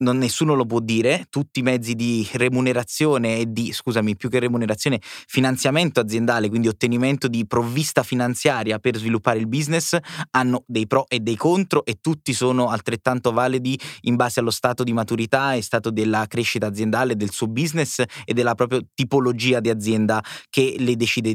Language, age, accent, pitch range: Italian, 20-39, native, 115-135 Hz